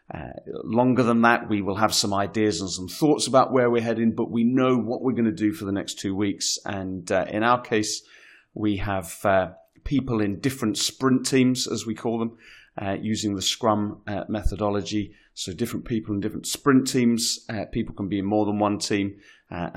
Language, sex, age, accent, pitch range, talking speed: English, male, 30-49, British, 95-115 Hz, 210 wpm